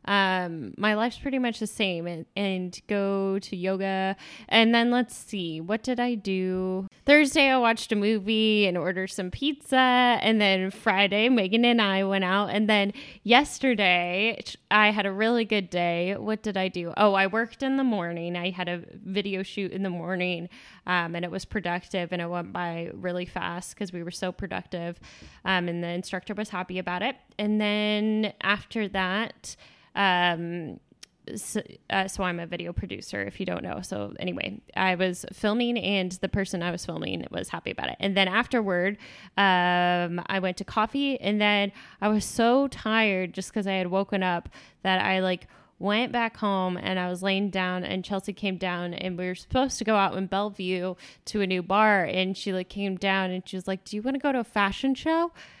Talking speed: 200 wpm